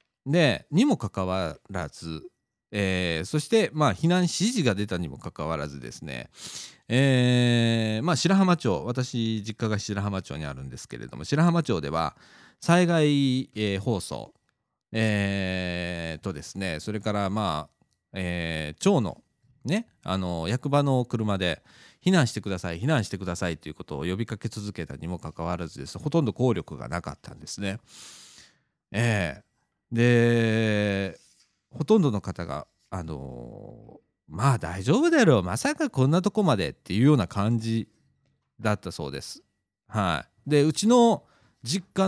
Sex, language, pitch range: male, Japanese, 95-145 Hz